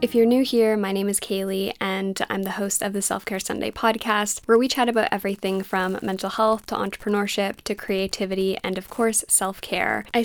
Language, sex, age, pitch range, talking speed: English, female, 10-29, 190-220 Hz, 200 wpm